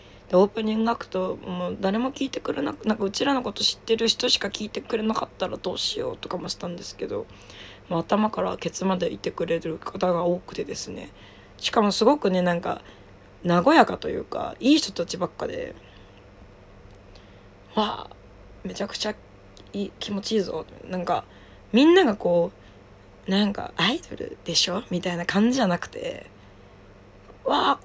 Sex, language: female, Japanese